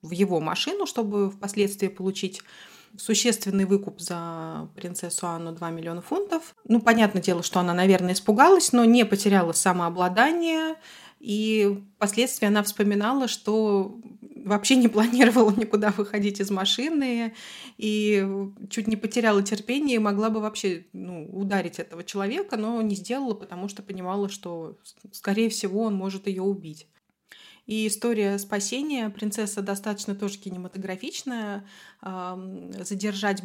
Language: Russian